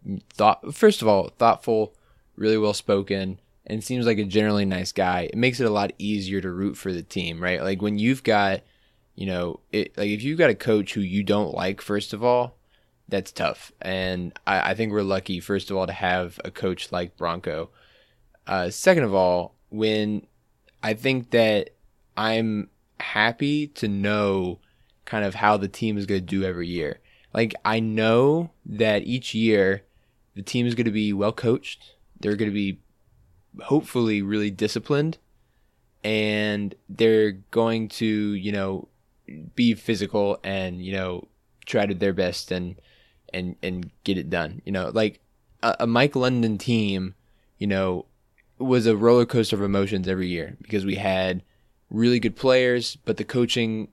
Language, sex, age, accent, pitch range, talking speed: English, male, 20-39, American, 95-115 Hz, 175 wpm